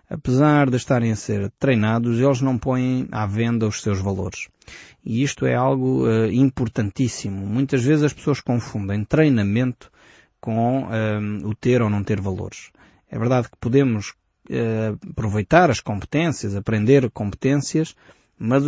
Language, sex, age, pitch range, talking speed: Portuguese, male, 20-39, 110-135 Hz, 135 wpm